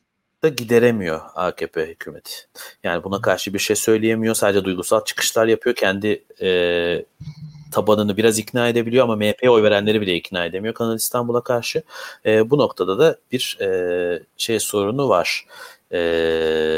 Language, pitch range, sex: Turkish, 100-140 Hz, male